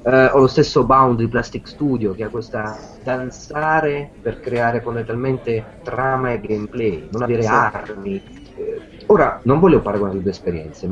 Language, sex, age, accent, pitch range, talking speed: Italian, male, 40-59, native, 100-145 Hz, 165 wpm